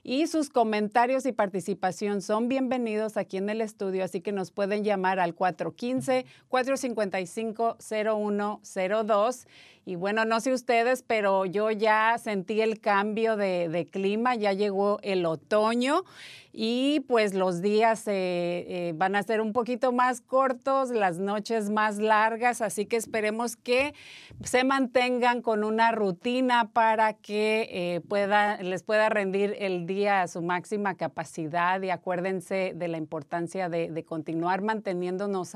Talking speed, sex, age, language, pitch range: 140 wpm, female, 40-59, Spanish, 190-235 Hz